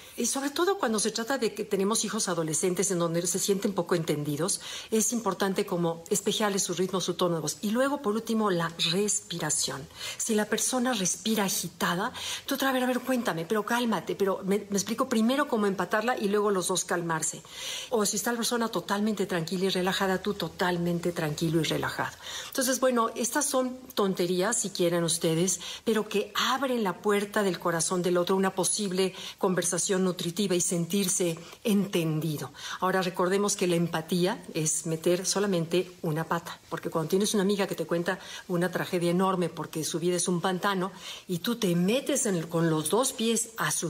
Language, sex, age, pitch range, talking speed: Spanish, female, 50-69, 175-210 Hz, 180 wpm